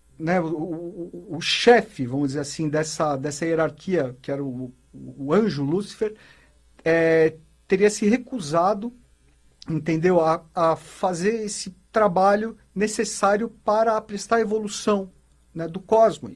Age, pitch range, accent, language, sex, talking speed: 50-69, 160-210 Hz, Brazilian, Portuguese, male, 130 wpm